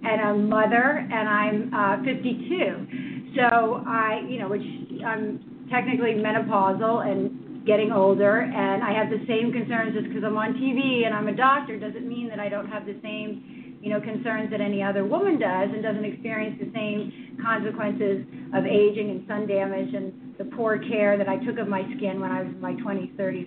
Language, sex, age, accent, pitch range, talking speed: English, female, 30-49, American, 210-250 Hz, 195 wpm